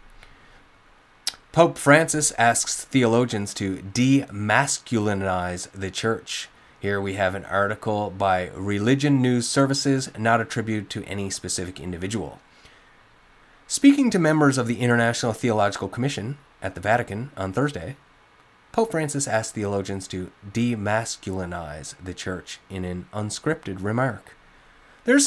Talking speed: 120 wpm